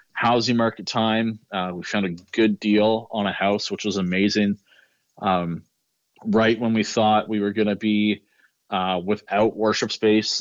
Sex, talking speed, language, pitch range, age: male, 160 wpm, English, 100-115 Hz, 30-49